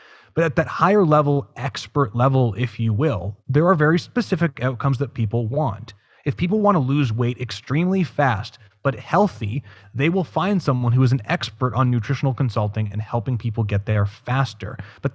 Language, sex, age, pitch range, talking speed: English, male, 30-49, 110-150 Hz, 180 wpm